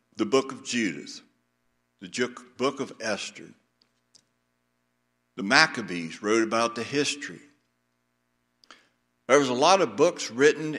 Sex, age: male, 60-79